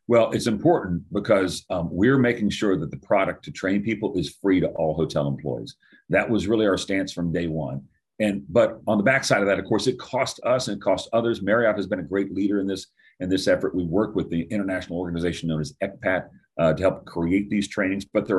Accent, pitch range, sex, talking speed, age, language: American, 85-115 Hz, male, 235 wpm, 40-59, English